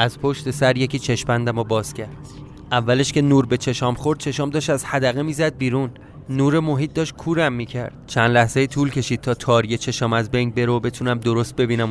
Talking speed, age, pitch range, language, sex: 195 wpm, 30-49, 120-145 Hz, Persian, male